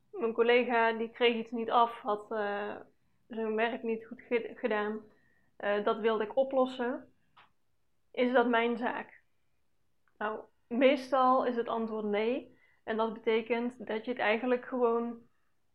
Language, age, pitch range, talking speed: Dutch, 20-39, 225-255 Hz, 145 wpm